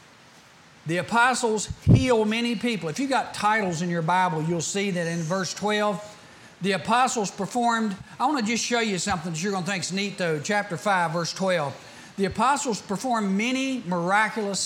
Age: 50-69